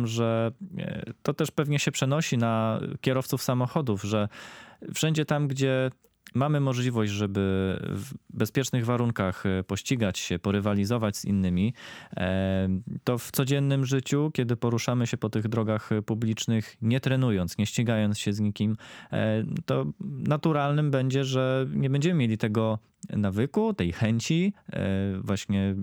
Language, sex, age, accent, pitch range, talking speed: Polish, male, 20-39, native, 100-130 Hz, 125 wpm